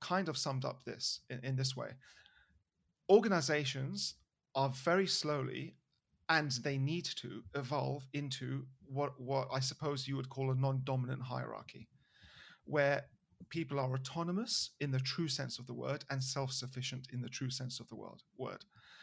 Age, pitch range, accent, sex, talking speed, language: 40-59, 130-155 Hz, British, male, 155 wpm, English